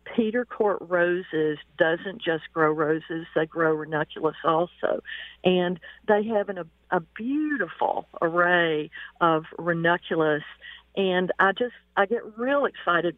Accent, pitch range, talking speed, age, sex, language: American, 170-215 Hz, 130 wpm, 50-69, female, English